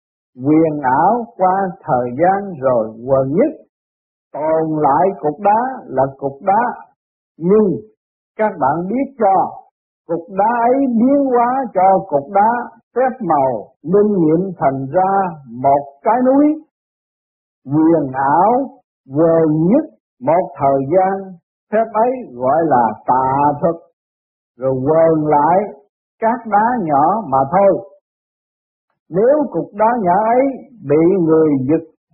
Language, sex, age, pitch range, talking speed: Vietnamese, male, 50-69, 145-225 Hz, 125 wpm